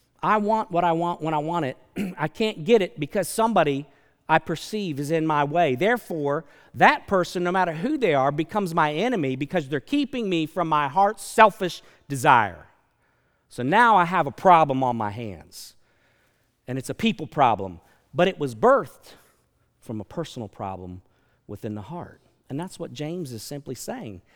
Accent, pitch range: American, 150-230 Hz